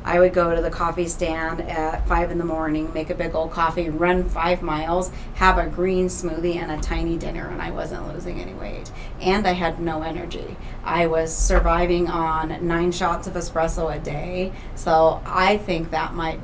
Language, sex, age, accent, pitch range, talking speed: English, female, 30-49, American, 160-175 Hz, 195 wpm